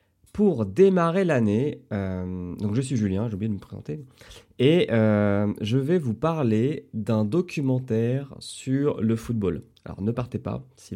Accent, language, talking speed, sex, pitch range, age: French, French, 155 wpm, male, 95-130 Hz, 30-49